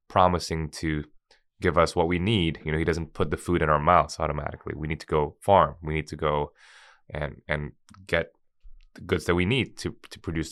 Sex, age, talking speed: male, 20-39, 215 wpm